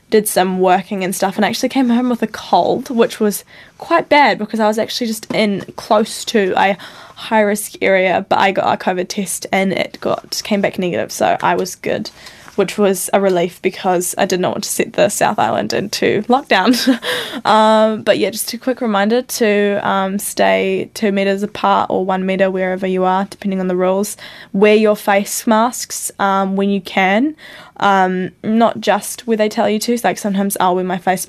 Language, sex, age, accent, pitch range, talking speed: English, female, 10-29, Australian, 185-210 Hz, 205 wpm